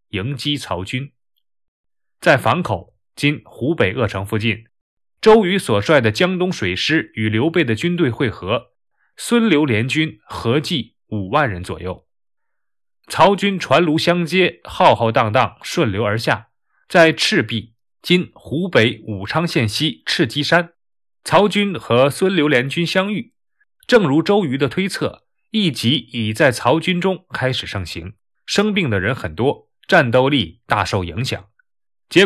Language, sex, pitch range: Chinese, male, 115-175 Hz